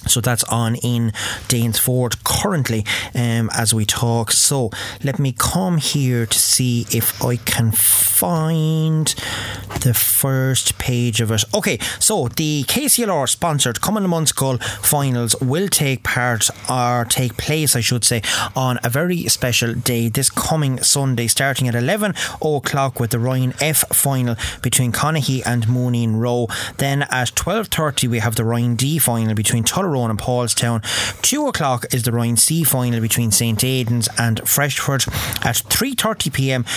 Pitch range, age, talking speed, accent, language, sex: 115-140 Hz, 30-49, 150 wpm, Irish, English, male